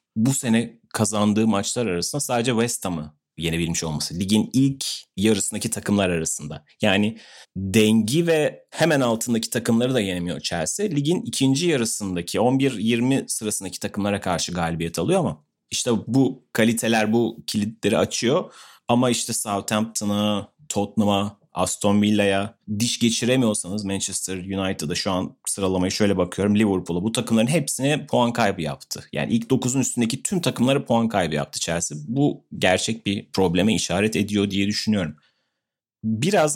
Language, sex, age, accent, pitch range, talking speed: Turkish, male, 30-49, native, 100-120 Hz, 135 wpm